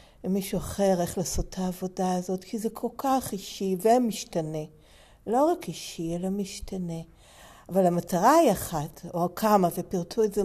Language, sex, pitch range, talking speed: Hebrew, female, 185-215 Hz, 150 wpm